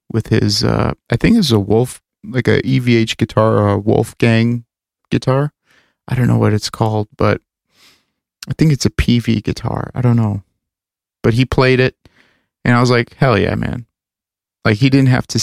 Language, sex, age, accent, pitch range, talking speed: English, male, 30-49, American, 100-120 Hz, 185 wpm